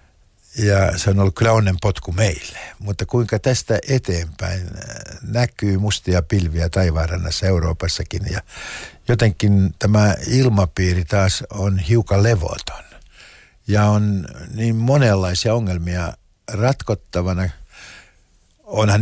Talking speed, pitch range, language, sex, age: 100 wpm, 90-110 Hz, Finnish, male, 60-79